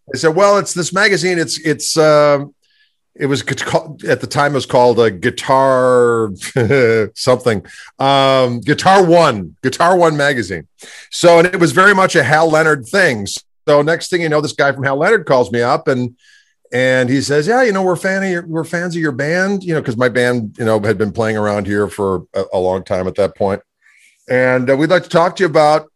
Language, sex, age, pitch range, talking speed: English, male, 50-69, 125-170 Hz, 215 wpm